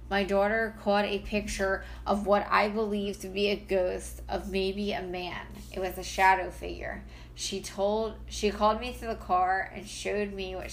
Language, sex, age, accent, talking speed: English, female, 20-39, American, 190 wpm